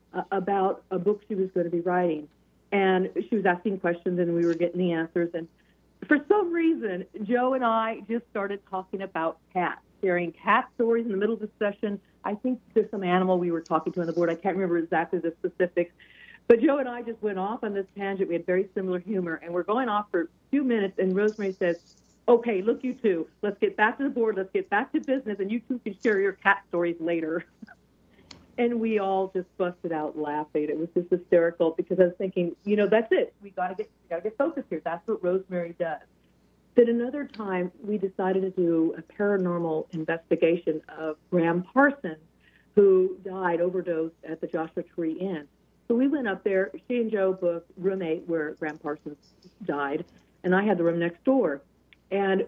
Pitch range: 170-210 Hz